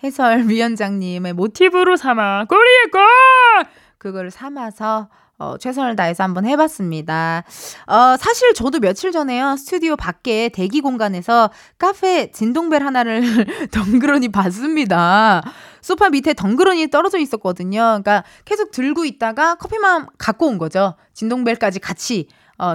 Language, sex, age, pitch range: Korean, female, 20-39, 210-330 Hz